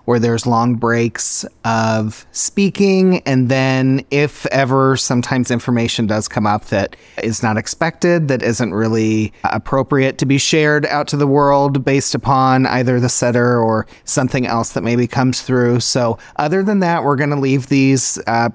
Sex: male